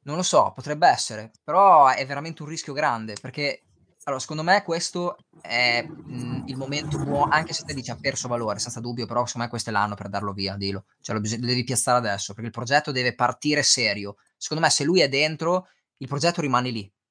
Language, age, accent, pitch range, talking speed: Italian, 20-39, native, 115-150 Hz, 210 wpm